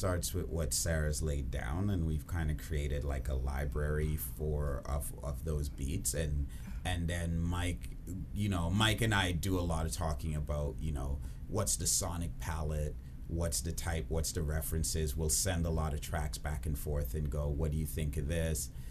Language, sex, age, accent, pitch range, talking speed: English, male, 30-49, American, 75-85 Hz, 200 wpm